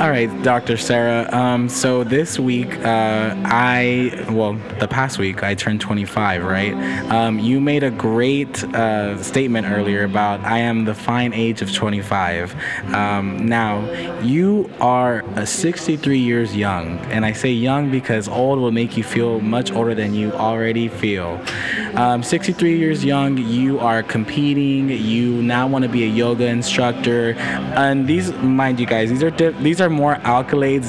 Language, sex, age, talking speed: English, male, 20-39, 155 wpm